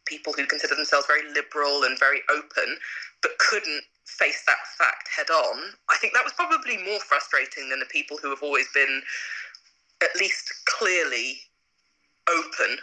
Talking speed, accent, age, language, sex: 160 wpm, British, 20-39, English, female